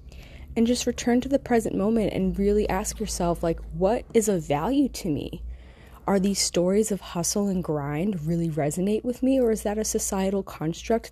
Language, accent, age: English, American, 20-39